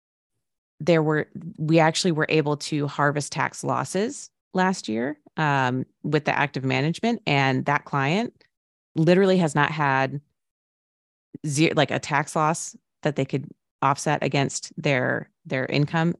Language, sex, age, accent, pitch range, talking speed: English, female, 30-49, American, 140-165 Hz, 135 wpm